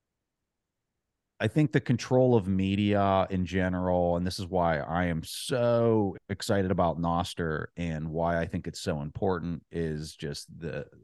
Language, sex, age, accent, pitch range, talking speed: English, male, 30-49, American, 80-100 Hz, 150 wpm